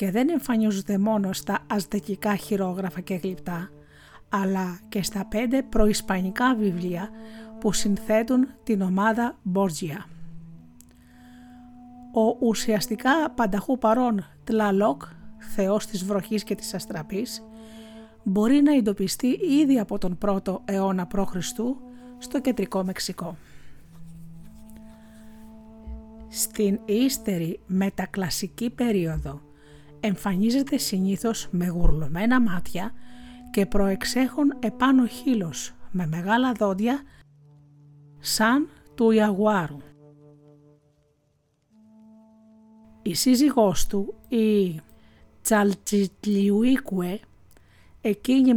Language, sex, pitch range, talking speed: Greek, female, 185-230 Hz, 85 wpm